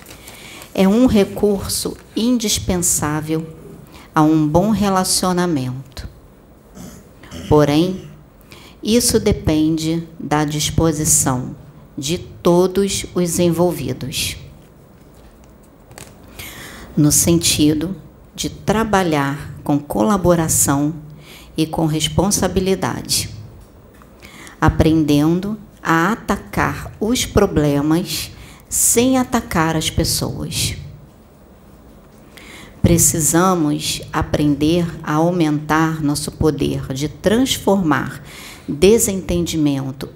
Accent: Brazilian